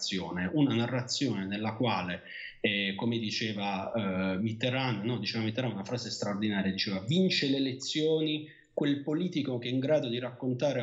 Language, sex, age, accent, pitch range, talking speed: Italian, male, 30-49, native, 110-145 Hz, 135 wpm